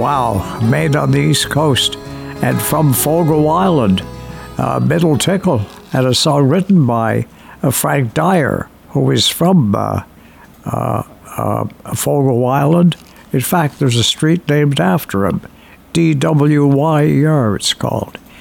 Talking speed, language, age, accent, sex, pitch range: 145 wpm, English, 60-79, American, male, 130-165 Hz